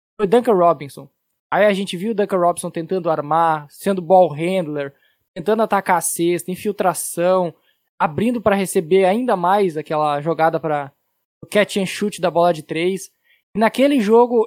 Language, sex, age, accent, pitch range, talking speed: Portuguese, male, 10-29, Brazilian, 165-205 Hz, 160 wpm